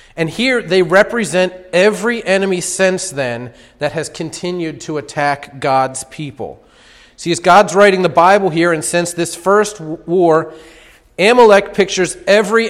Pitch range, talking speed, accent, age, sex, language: 145-190 Hz, 140 wpm, American, 40-59, male, English